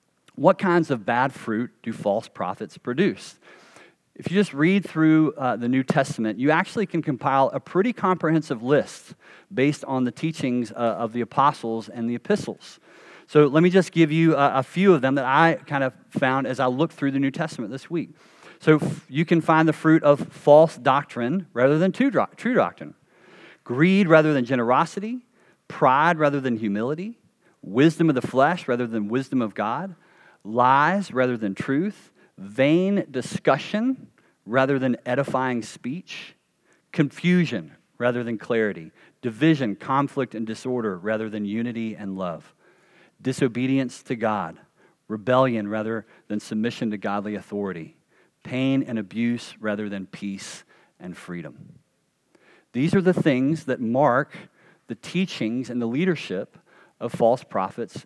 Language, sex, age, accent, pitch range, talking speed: English, male, 40-59, American, 120-165 Hz, 150 wpm